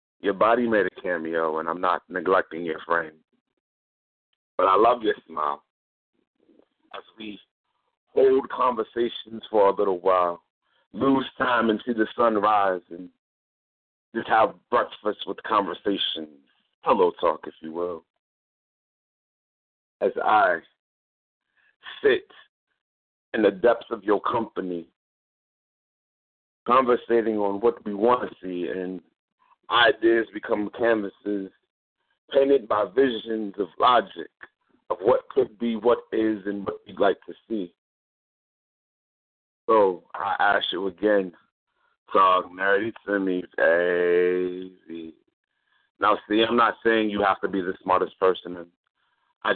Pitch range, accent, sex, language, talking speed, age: 90-115 Hz, American, male, English, 125 wpm, 50-69